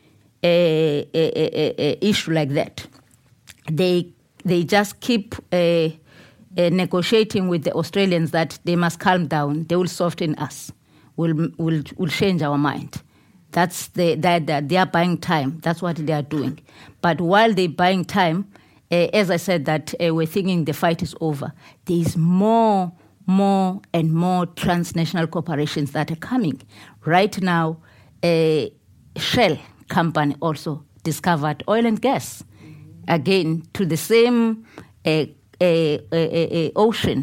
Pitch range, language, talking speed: 150-185 Hz, English, 150 wpm